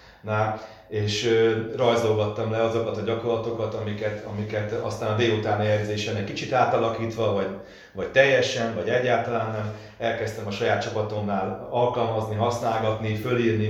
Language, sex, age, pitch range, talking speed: Hungarian, male, 30-49, 110-120 Hz, 125 wpm